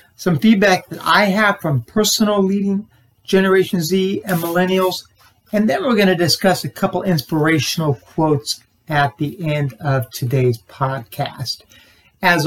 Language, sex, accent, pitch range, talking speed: English, male, American, 135-180 Hz, 140 wpm